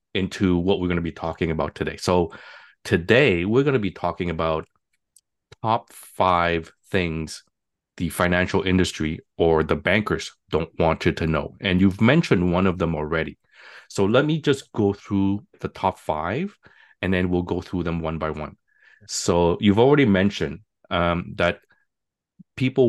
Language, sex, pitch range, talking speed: English, male, 80-100 Hz, 165 wpm